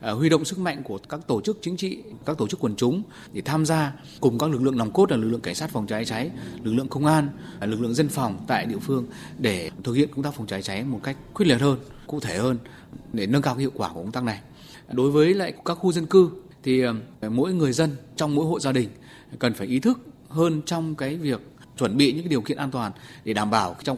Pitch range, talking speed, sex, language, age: 115-155 Hz, 260 wpm, male, Vietnamese, 20-39